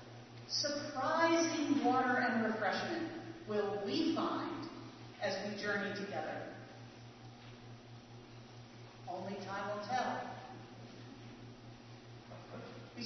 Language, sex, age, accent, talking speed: English, female, 50-69, American, 75 wpm